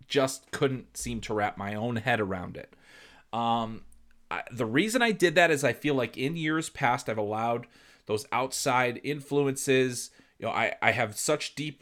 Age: 30-49